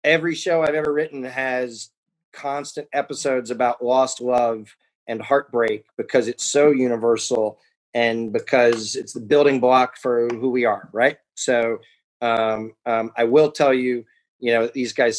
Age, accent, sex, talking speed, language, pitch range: 30-49, American, male, 160 wpm, English, 115-135 Hz